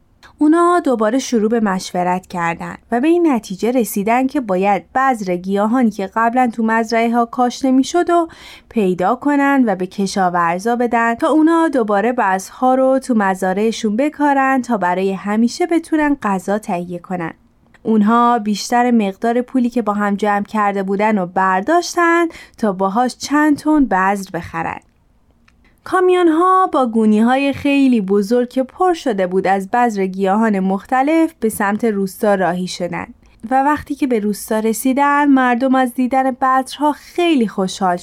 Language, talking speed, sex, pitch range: Persian, 150 wpm, female, 205-270 Hz